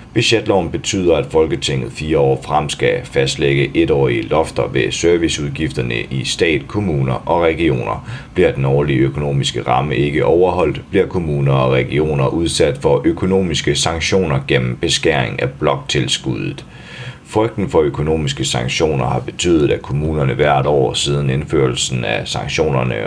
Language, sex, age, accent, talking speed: Danish, male, 30-49, native, 135 wpm